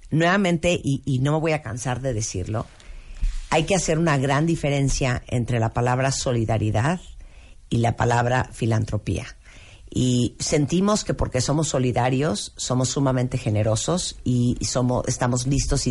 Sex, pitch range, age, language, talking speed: female, 120-155 Hz, 50-69, Spanish, 145 wpm